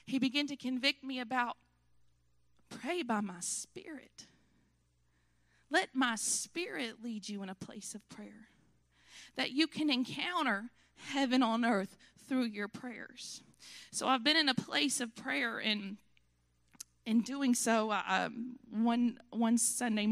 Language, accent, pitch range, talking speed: English, American, 200-245 Hz, 135 wpm